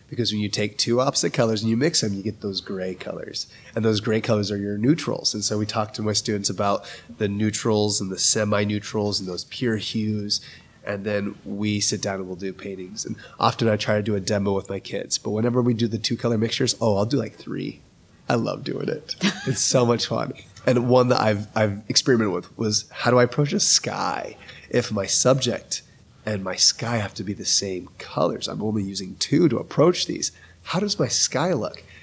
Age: 30-49